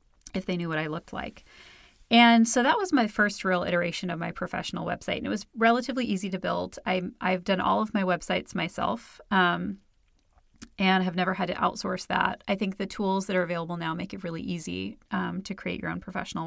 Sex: female